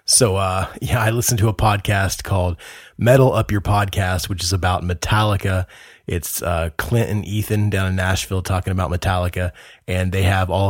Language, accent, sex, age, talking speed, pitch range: English, American, male, 20-39, 180 wpm, 95-125 Hz